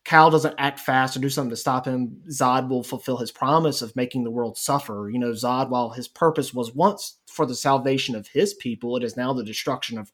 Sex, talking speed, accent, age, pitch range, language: male, 235 wpm, American, 30-49, 125-145 Hz, English